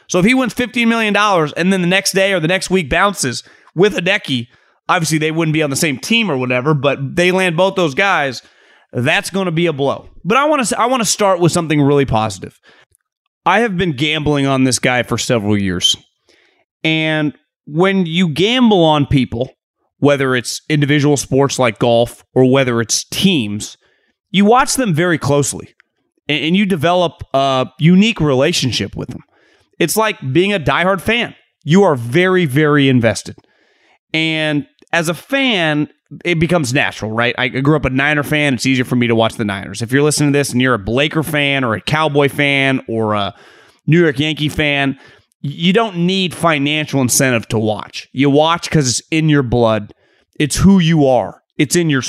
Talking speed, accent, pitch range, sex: 190 wpm, American, 130-185 Hz, male